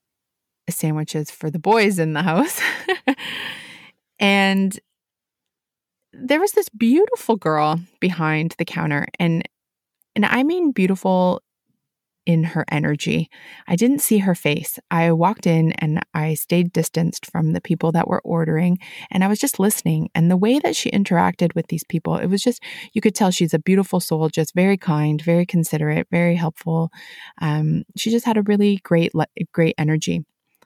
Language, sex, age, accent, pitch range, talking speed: English, female, 20-39, American, 160-200 Hz, 160 wpm